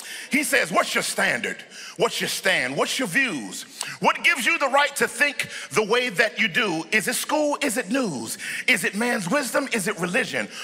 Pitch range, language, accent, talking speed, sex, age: 230-285 Hz, English, American, 205 wpm, male, 40-59